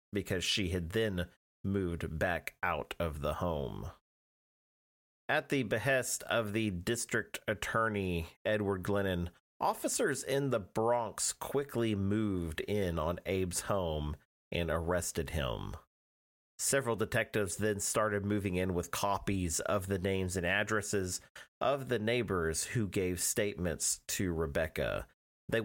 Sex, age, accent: male, 40-59, American